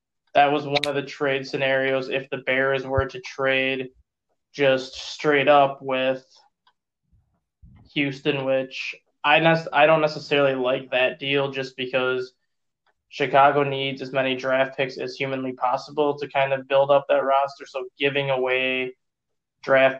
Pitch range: 130-150 Hz